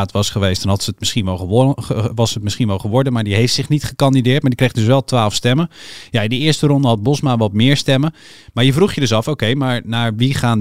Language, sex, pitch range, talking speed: Dutch, male, 100-130 Hz, 275 wpm